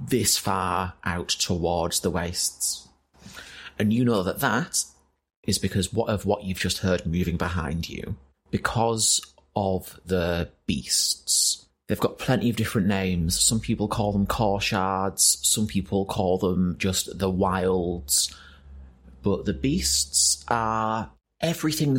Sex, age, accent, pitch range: male, 30-49, British, 90-105 Hz